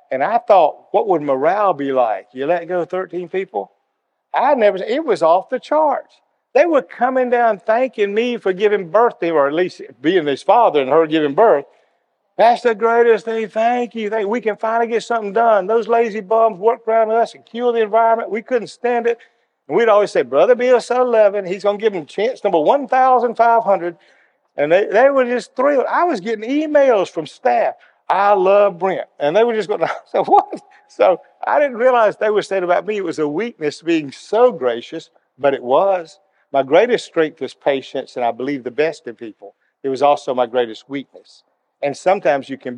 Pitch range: 160-240 Hz